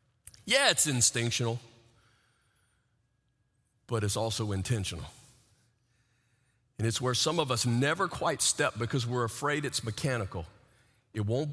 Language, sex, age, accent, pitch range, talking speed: English, male, 40-59, American, 115-130 Hz, 120 wpm